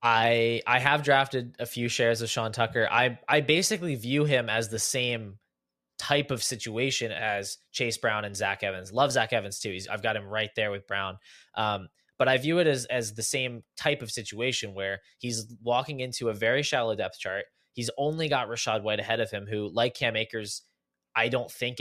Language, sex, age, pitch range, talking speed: English, male, 20-39, 105-125 Hz, 205 wpm